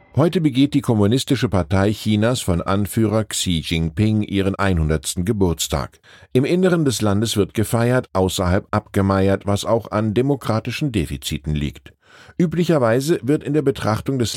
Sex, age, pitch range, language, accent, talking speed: male, 10-29, 90-125 Hz, German, German, 140 wpm